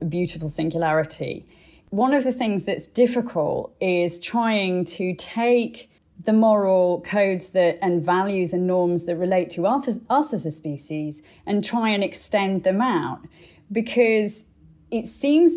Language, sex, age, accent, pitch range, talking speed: English, female, 30-49, British, 165-205 Hz, 145 wpm